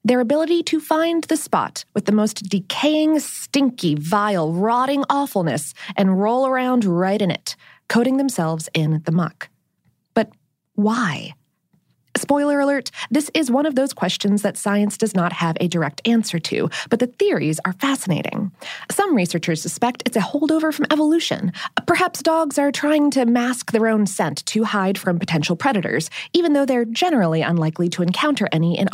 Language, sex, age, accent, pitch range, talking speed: English, female, 20-39, American, 185-285 Hz, 165 wpm